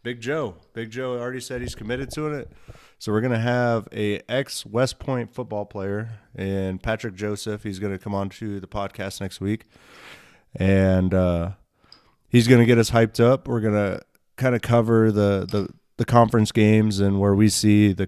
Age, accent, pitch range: 30-49, American, 100-120 Hz